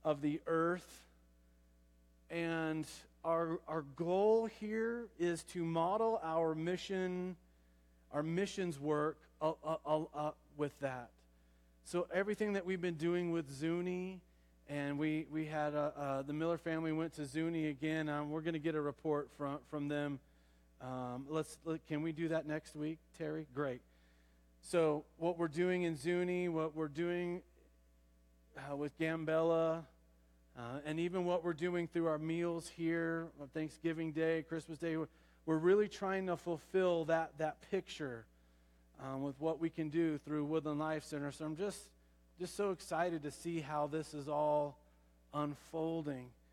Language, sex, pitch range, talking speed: English, male, 135-165 Hz, 155 wpm